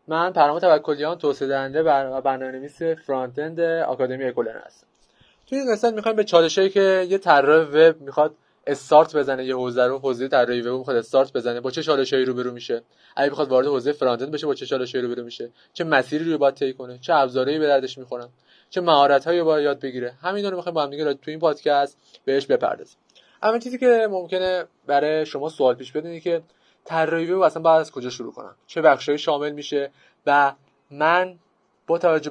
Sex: male